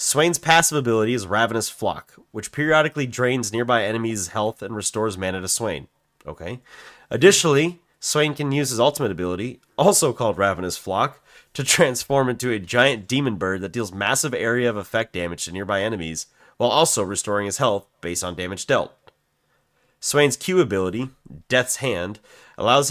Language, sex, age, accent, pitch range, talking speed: English, male, 30-49, American, 100-135 Hz, 155 wpm